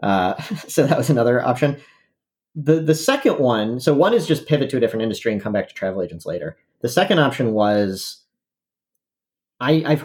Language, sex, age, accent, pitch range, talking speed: English, male, 40-59, American, 105-140 Hz, 190 wpm